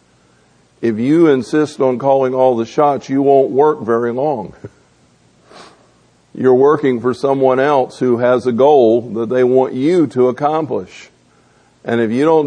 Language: English